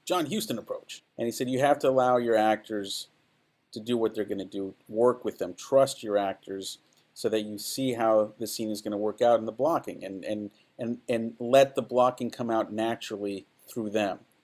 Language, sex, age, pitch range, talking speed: English, male, 50-69, 105-125 Hz, 215 wpm